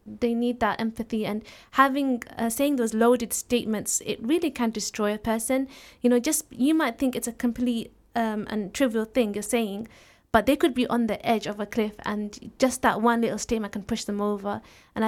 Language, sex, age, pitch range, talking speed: English, female, 20-39, 215-245 Hz, 210 wpm